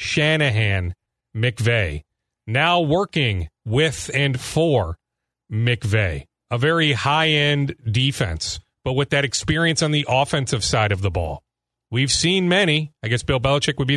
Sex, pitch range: male, 125-180 Hz